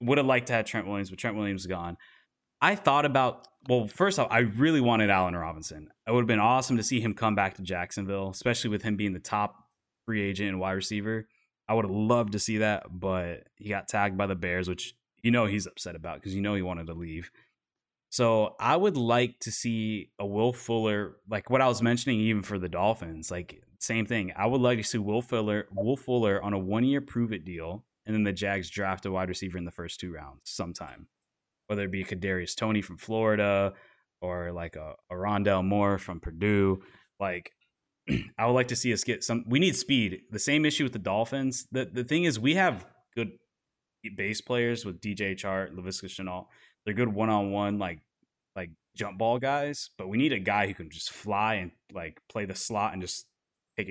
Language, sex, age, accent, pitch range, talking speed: English, male, 20-39, American, 95-115 Hz, 215 wpm